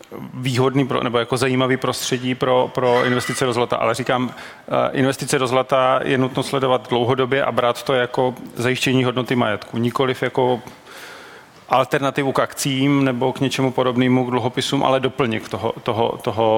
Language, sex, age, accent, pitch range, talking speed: Czech, male, 30-49, native, 115-130 Hz, 140 wpm